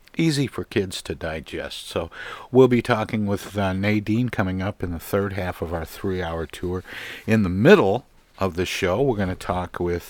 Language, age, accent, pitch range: English, 50-69, American, 85-105 Hz